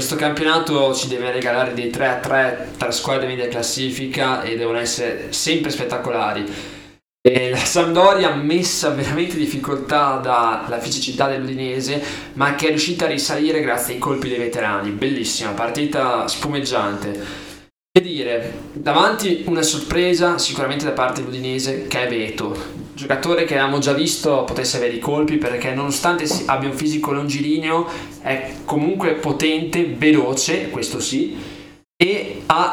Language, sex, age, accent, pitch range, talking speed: Italian, male, 20-39, native, 125-155 Hz, 145 wpm